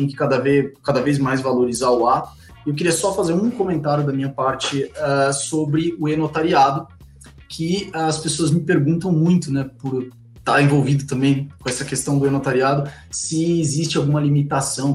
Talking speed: 175 wpm